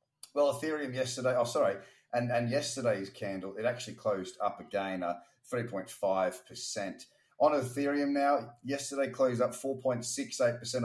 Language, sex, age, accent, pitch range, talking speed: English, male, 30-49, Australian, 110-130 Hz, 125 wpm